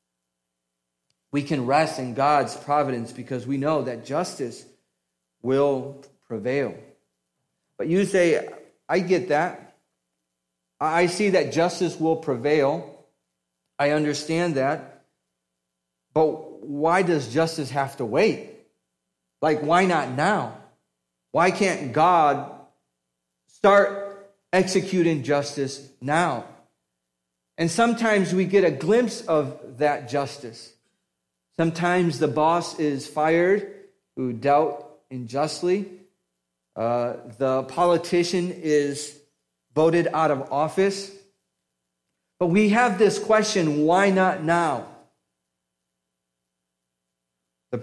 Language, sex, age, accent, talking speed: English, male, 40-59, American, 100 wpm